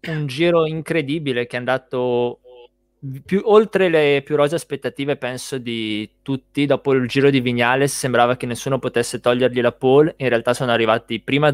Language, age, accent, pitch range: Italian, 20-39, native, 120-140 Hz